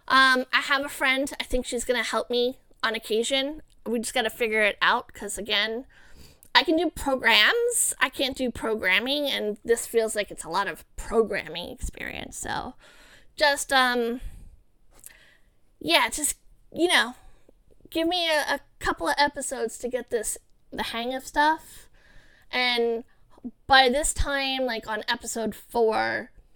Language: English